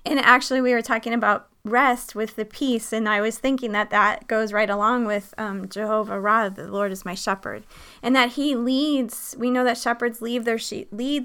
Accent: American